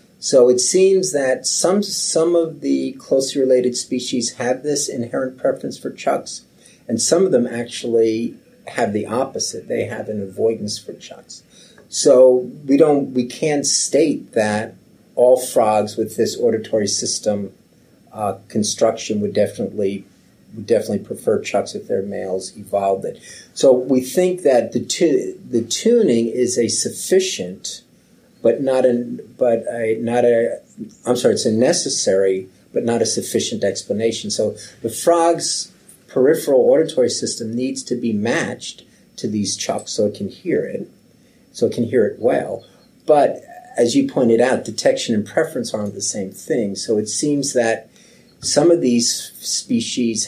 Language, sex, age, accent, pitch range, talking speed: English, male, 40-59, American, 110-160 Hz, 155 wpm